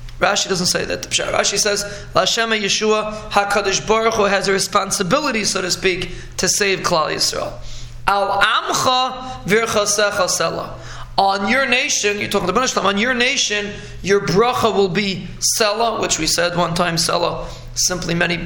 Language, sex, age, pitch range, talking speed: English, male, 20-39, 185-225 Hz, 150 wpm